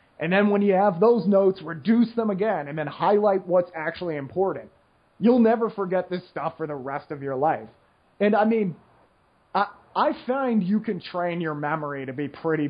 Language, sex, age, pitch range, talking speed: English, male, 30-49, 155-205 Hz, 195 wpm